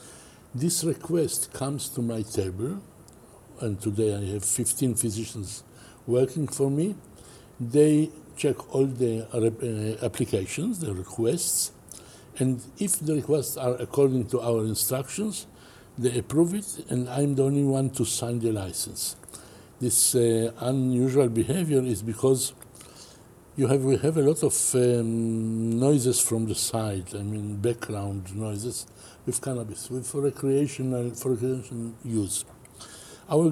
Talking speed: 130 wpm